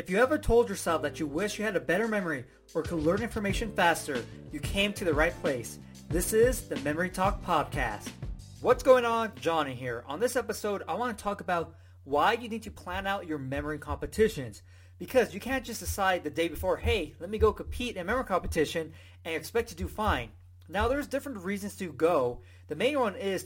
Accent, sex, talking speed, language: American, male, 215 wpm, English